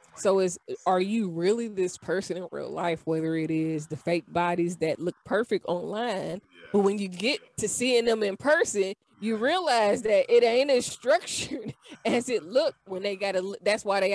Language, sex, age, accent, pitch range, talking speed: English, female, 20-39, American, 180-225 Hz, 195 wpm